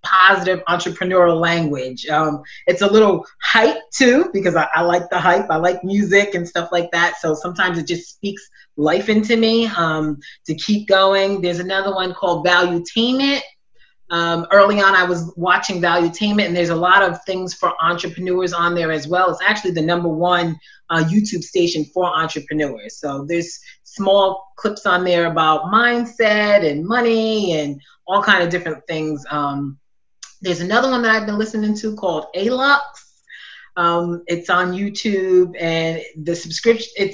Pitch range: 170-200 Hz